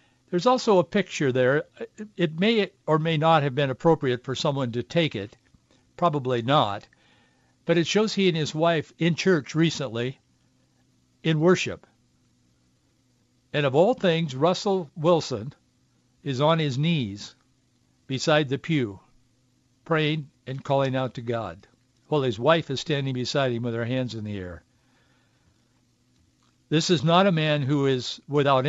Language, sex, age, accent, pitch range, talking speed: English, male, 60-79, American, 125-155 Hz, 150 wpm